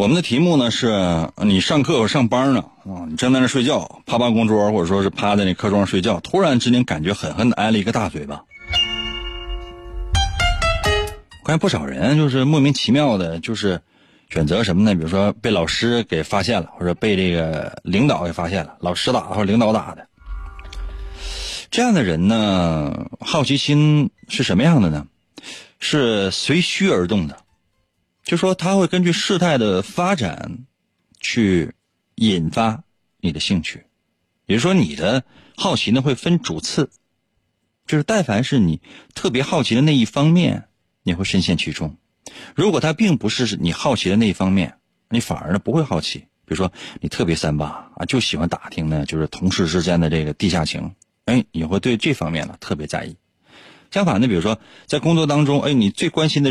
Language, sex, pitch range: Chinese, male, 85-135 Hz